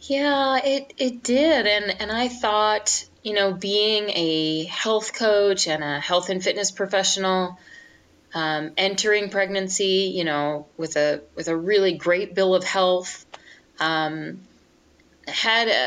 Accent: American